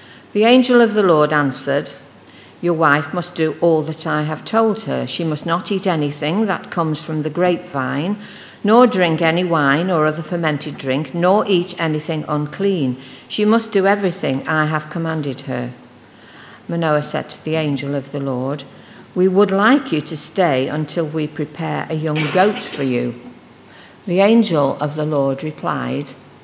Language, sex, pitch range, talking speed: English, female, 145-185 Hz, 170 wpm